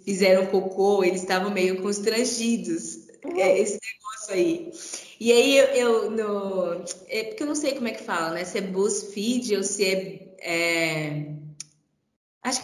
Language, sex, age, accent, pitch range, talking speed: Portuguese, female, 20-39, Brazilian, 185-255 Hz, 155 wpm